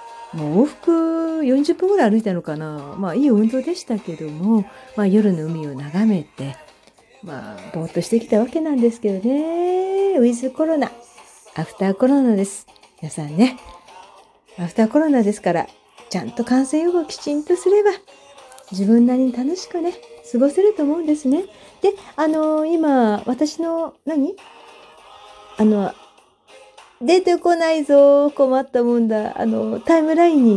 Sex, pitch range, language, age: female, 175-285 Hz, Japanese, 40-59